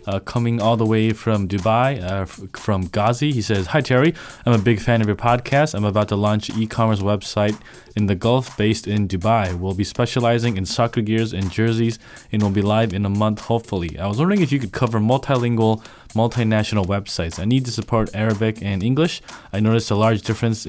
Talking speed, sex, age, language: 210 wpm, male, 20-39, English